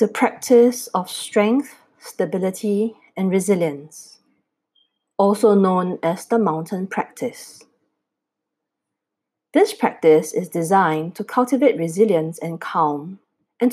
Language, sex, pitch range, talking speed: English, female, 180-240 Hz, 100 wpm